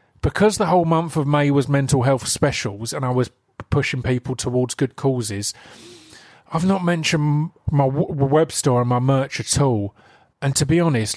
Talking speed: 175 wpm